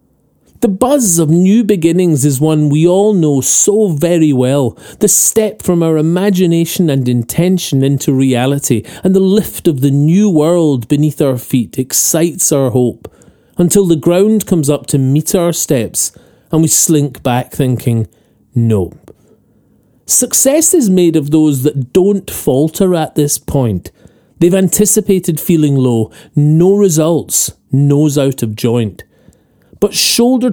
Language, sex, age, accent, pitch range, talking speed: English, male, 40-59, British, 135-190 Hz, 140 wpm